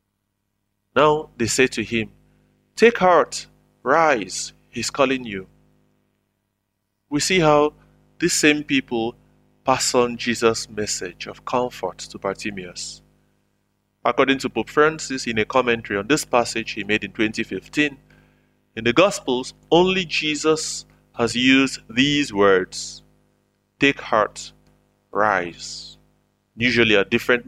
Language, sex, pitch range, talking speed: English, male, 100-135 Hz, 120 wpm